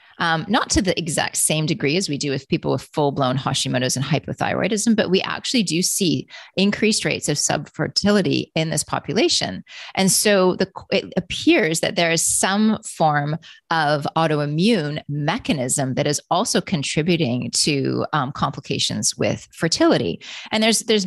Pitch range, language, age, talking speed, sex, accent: 135-165 Hz, English, 30-49, 155 wpm, female, American